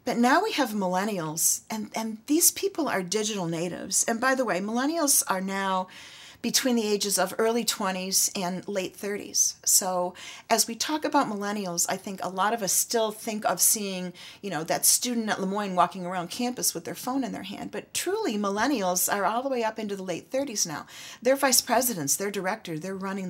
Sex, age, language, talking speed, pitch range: female, 40-59, English, 205 wpm, 180-230 Hz